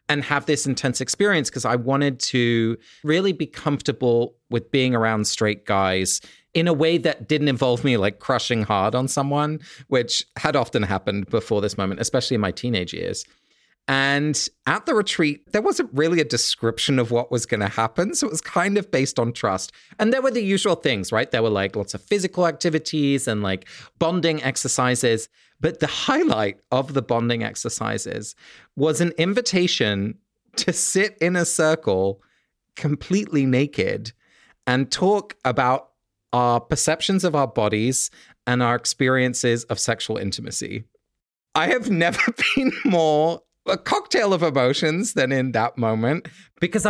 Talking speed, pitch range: 165 wpm, 120-175 Hz